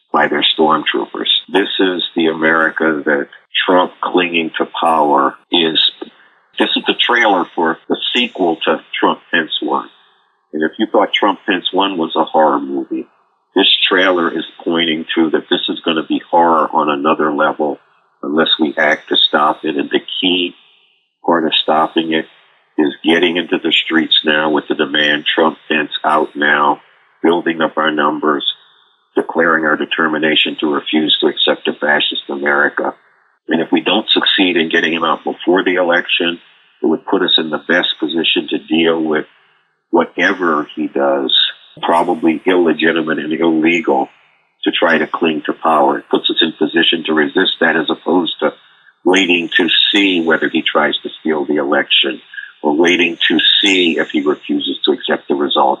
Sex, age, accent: male, 50-69, American